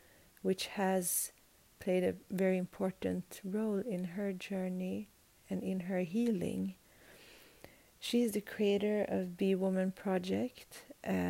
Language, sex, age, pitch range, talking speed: English, female, 40-59, 180-195 Hz, 120 wpm